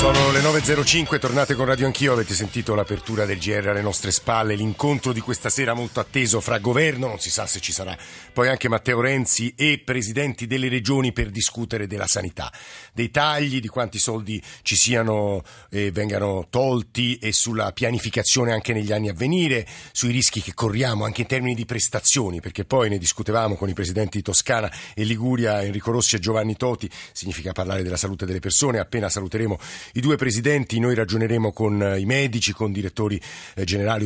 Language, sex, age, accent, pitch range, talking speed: Italian, male, 50-69, native, 105-130 Hz, 180 wpm